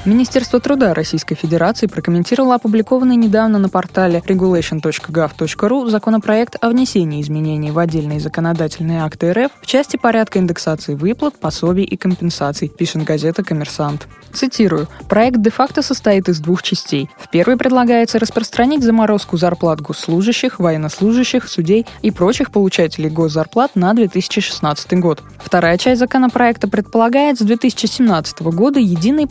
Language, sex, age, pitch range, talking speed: Russian, female, 20-39, 165-235 Hz, 125 wpm